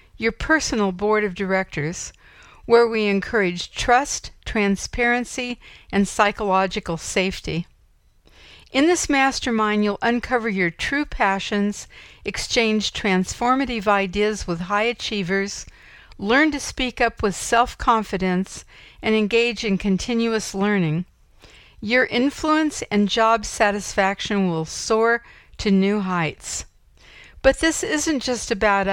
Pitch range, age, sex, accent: 195-235 Hz, 60-79, female, American